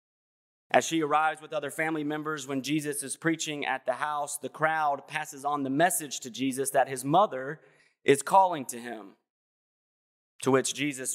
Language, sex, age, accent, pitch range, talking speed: English, male, 30-49, American, 130-155 Hz, 170 wpm